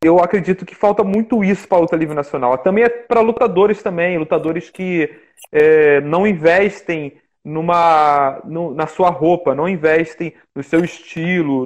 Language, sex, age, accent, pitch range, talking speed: Portuguese, male, 30-49, Brazilian, 165-220 Hz, 145 wpm